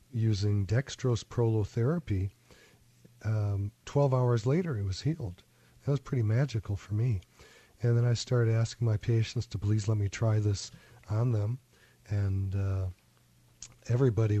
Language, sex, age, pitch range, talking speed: English, male, 40-59, 105-125 Hz, 140 wpm